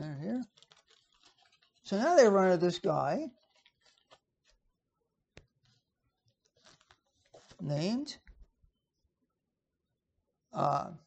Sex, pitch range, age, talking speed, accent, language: male, 155-225 Hz, 60-79, 55 wpm, American, English